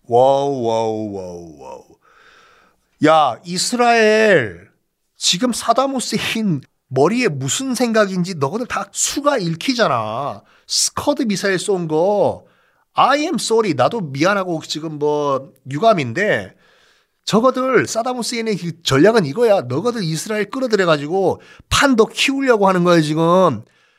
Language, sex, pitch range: Korean, male, 145-230 Hz